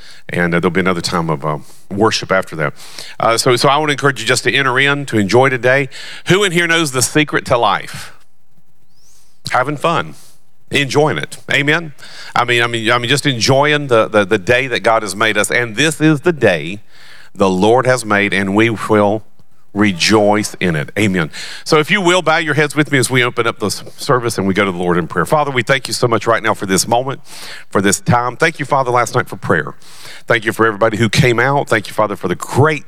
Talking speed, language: 235 wpm, English